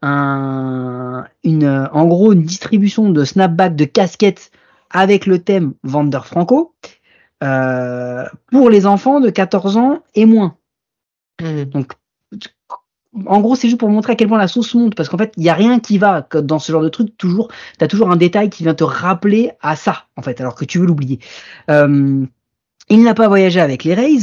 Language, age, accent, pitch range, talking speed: French, 30-49, French, 155-230 Hz, 195 wpm